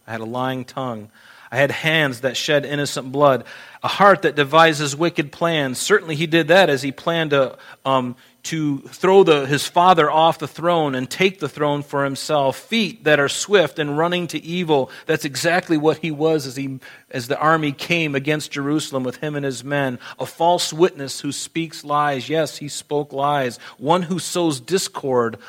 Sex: male